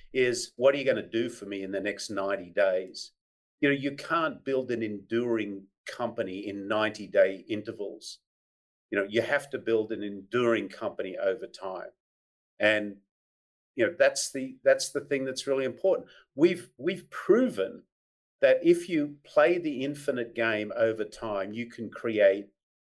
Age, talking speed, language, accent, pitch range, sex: 50-69, 165 wpm, English, Australian, 105-140 Hz, male